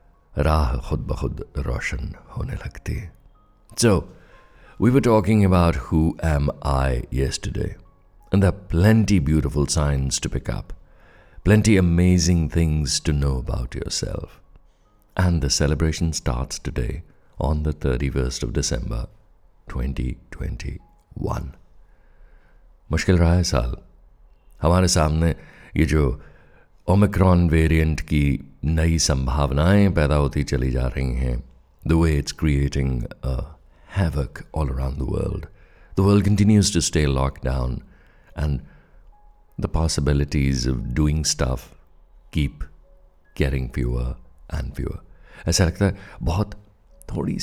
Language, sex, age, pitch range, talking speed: Hindi, male, 60-79, 70-90 Hz, 105 wpm